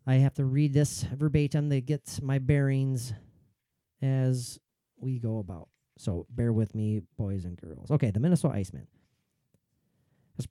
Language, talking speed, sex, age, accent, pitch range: English, 155 wpm, male, 40-59, American, 125-170 Hz